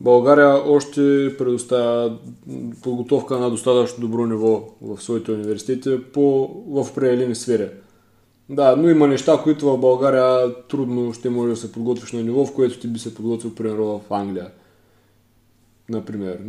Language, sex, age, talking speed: Bulgarian, male, 20-39, 145 wpm